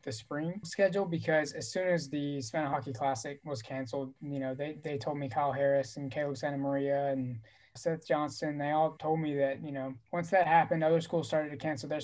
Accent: American